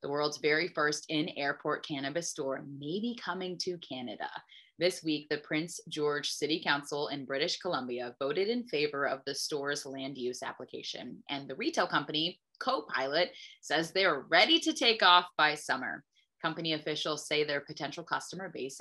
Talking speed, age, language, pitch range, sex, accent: 165 wpm, 20-39, English, 145-190 Hz, female, American